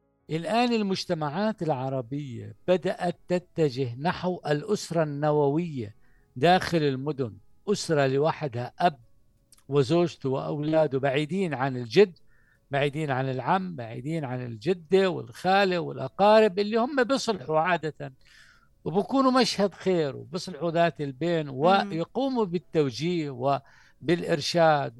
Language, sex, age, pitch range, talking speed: Arabic, male, 60-79, 130-180 Hz, 95 wpm